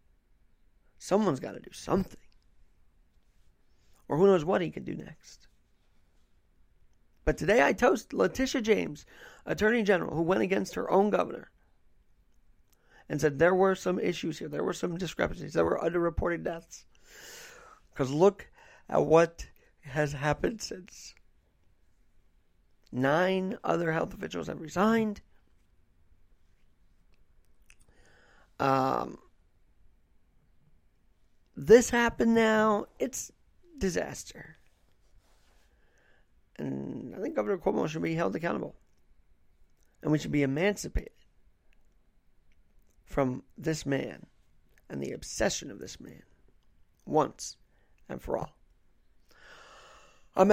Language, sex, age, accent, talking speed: English, male, 50-69, American, 105 wpm